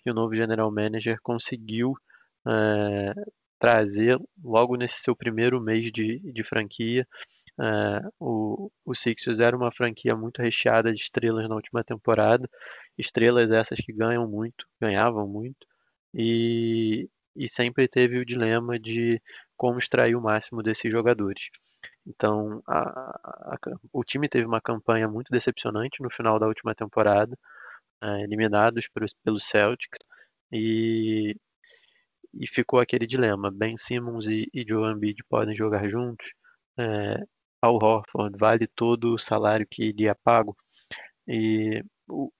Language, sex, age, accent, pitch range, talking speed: Portuguese, male, 20-39, Brazilian, 110-120 Hz, 135 wpm